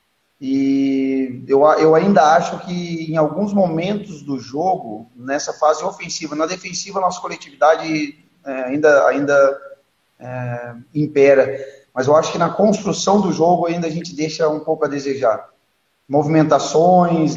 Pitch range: 145-175 Hz